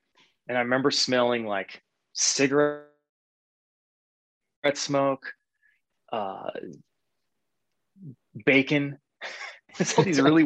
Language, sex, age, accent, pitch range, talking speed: English, male, 20-39, American, 110-140 Hz, 75 wpm